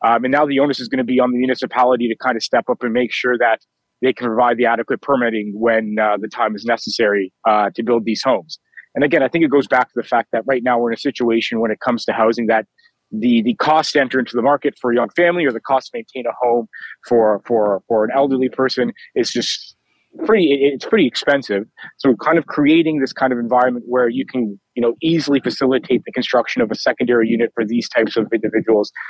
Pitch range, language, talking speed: 110-130 Hz, English, 245 wpm